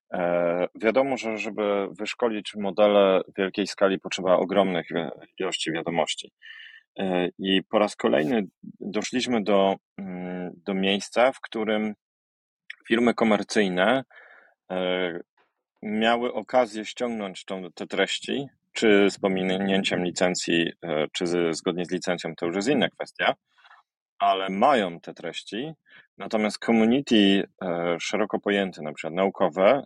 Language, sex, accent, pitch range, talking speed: Polish, male, native, 90-110 Hz, 105 wpm